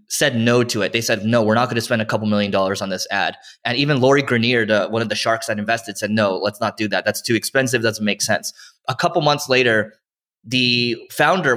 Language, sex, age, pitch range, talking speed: English, male, 20-39, 110-135 Hz, 255 wpm